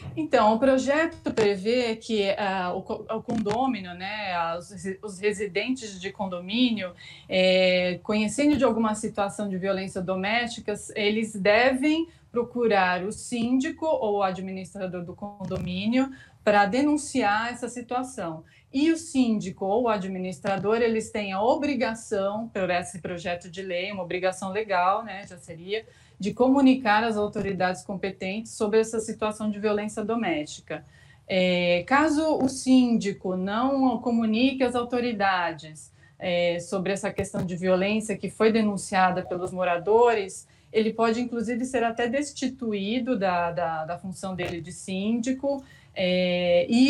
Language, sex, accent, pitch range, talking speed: Portuguese, female, Brazilian, 185-235 Hz, 125 wpm